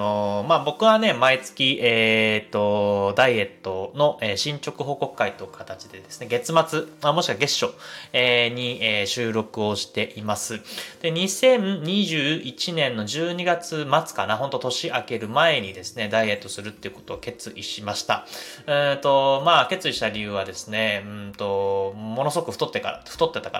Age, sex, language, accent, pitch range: 20-39, male, Japanese, native, 105-155 Hz